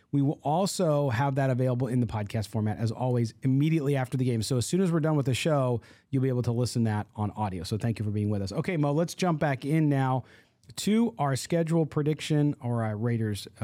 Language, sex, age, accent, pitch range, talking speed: English, male, 40-59, American, 120-155 Hz, 240 wpm